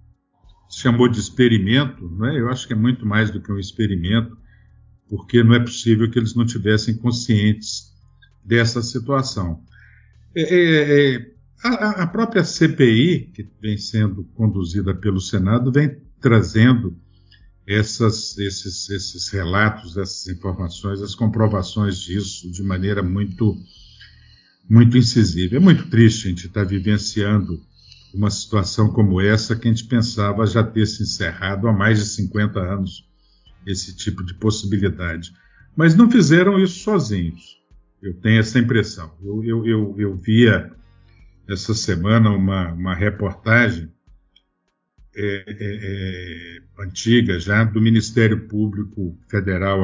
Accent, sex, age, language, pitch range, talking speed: Brazilian, male, 50-69, Portuguese, 95-115 Hz, 120 wpm